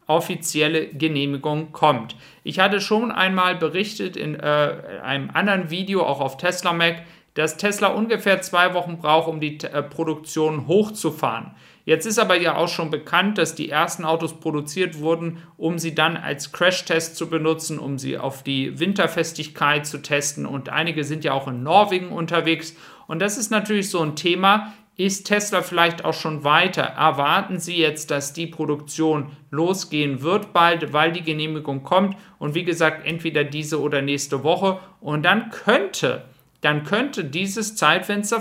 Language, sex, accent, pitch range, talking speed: German, male, German, 155-185 Hz, 160 wpm